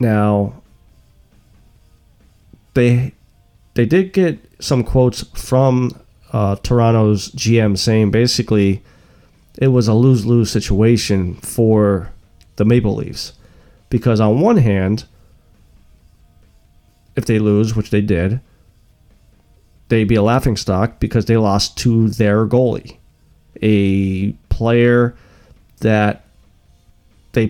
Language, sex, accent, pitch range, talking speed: English, male, American, 100-115 Hz, 100 wpm